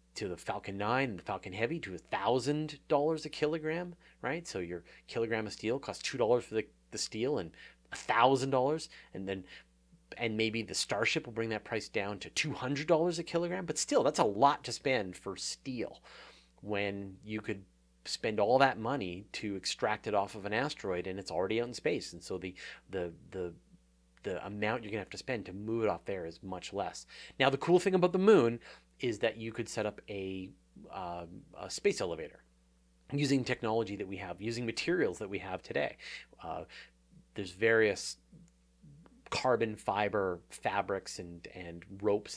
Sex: male